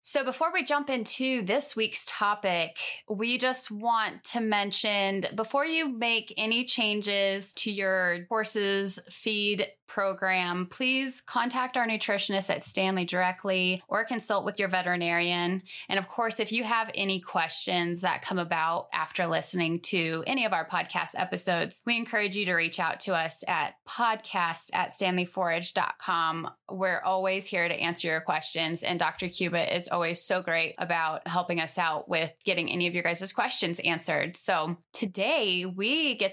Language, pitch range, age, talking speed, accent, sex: English, 175-225 Hz, 20-39, 160 wpm, American, female